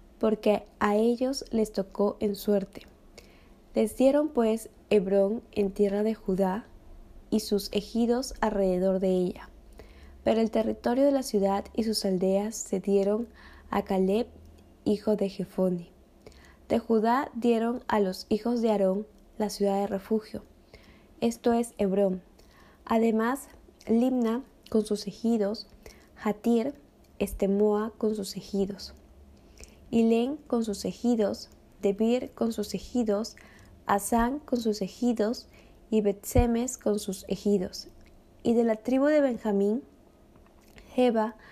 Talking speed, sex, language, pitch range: 125 wpm, female, Spanish, 200-235 Hz